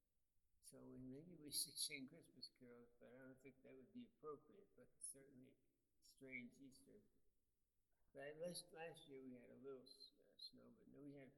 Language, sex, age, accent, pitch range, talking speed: English, male, 60-79, American, 130-150 Hz, 180 wpm